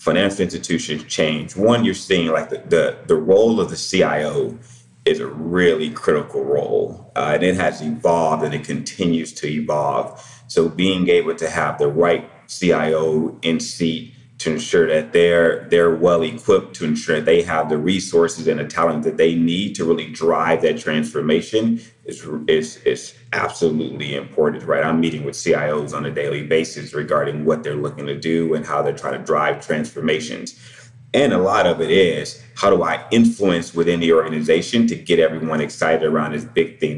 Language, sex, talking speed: English, male, 175 wpm